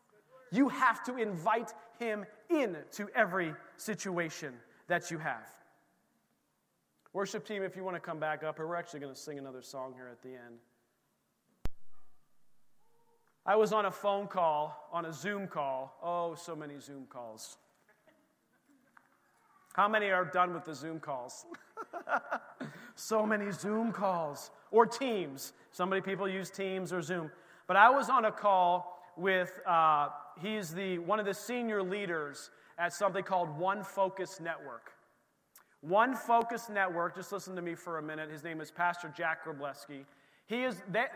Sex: male